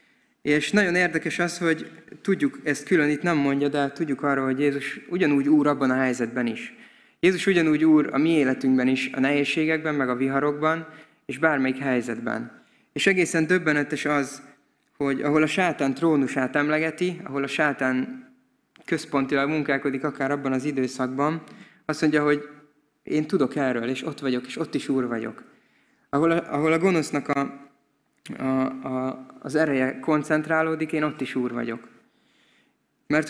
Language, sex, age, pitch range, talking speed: Hungarian, male, 20-39, 130-160 Hz, 155 wpm